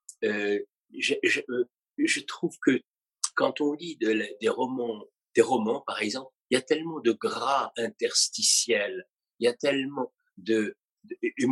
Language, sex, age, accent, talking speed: French, male, 60-79, French, 165 wpm